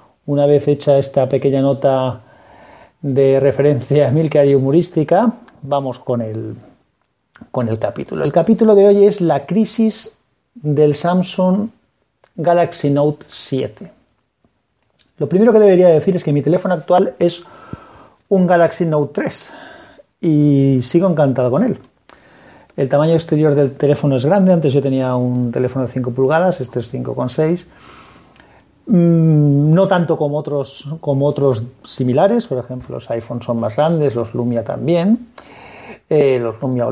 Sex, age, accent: male, 40-59, Spanish